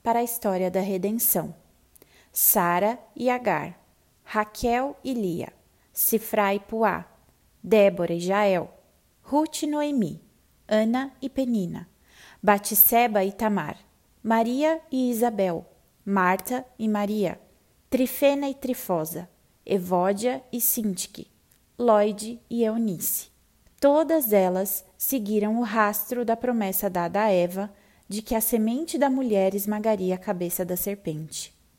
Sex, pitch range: female, 195-245 Hz